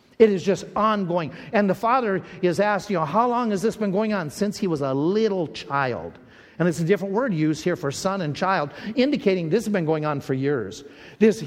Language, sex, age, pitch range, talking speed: English, male, 50-69, 195-260 Hz, 230 wpm